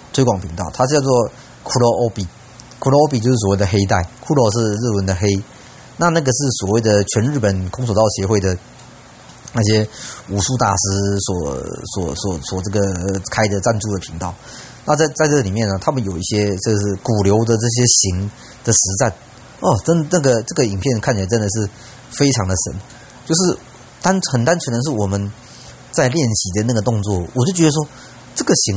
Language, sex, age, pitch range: Chinese, male, 30-49, 100-130 Hz